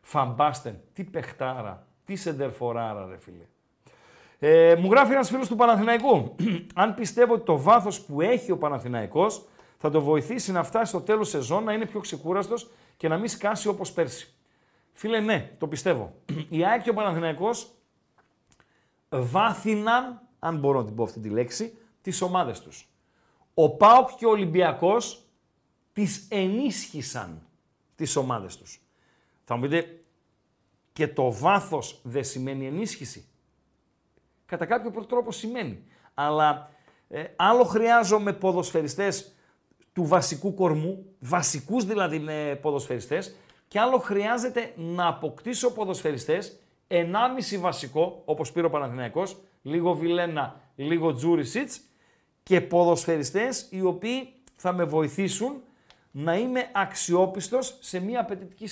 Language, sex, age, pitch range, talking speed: Greek, male, 50-69, 150-220 Hz, 130 wpm